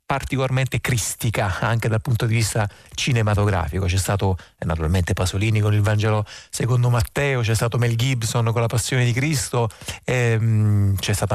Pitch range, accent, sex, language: 110-135 Hz, native, male, Italian